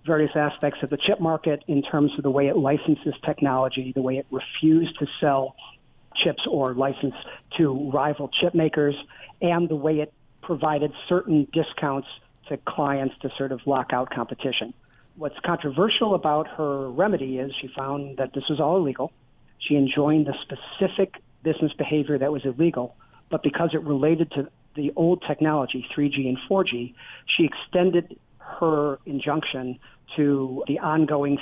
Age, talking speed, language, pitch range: 40-59, 155 wpm, English, 135-160 Hz